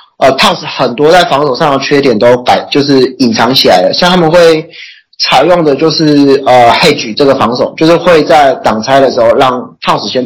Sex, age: male, 30-49